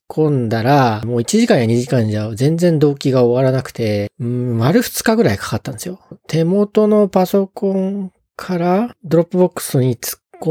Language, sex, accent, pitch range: Japanese, male, native, 120-170 Hz